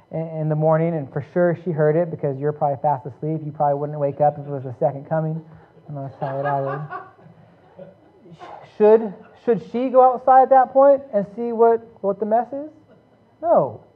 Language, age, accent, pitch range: English, 30-49, American, 145-225 Hz